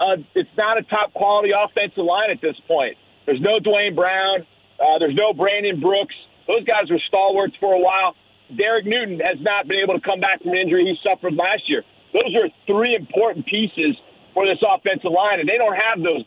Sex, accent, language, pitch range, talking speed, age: male, American, English, 185-225 Hz, 205 wpm, 40-59